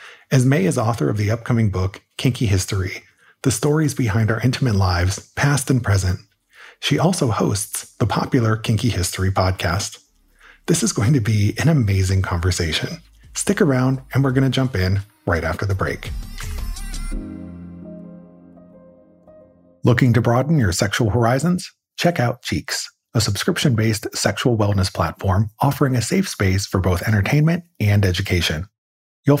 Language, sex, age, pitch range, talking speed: English, male, 30-49, 95-130 Hz, 145 wpm